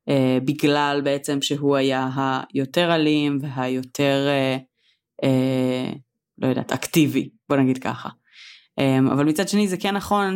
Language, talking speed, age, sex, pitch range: Hebrew, 135 wpm, 20-39, female, 145-185 Hz